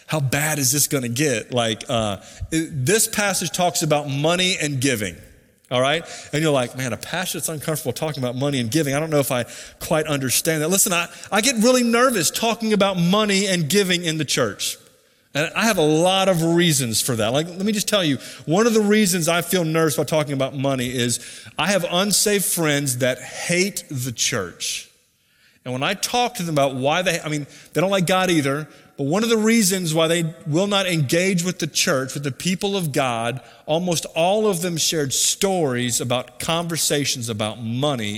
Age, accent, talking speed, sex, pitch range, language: 30-49, American, 205 wpm, male, 140-185 Hz, English